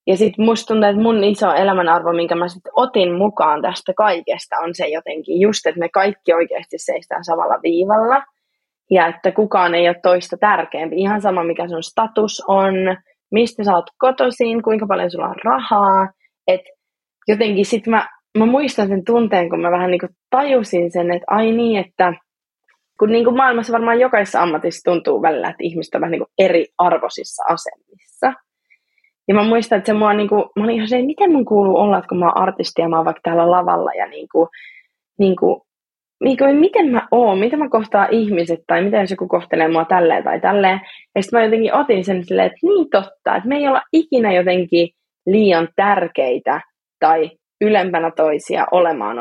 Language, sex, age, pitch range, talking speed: Finnish, female, 20-39, 180-235 Hz, 185 wpm